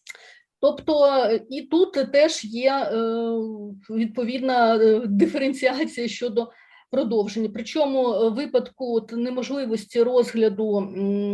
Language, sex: Ukrainian, female